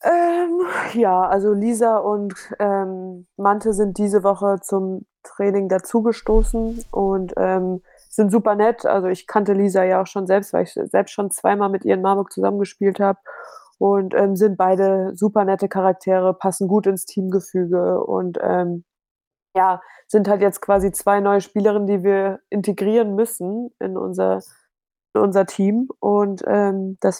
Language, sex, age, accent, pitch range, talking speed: German, female, 20-39, German, 190-215 Hz, 150 wpm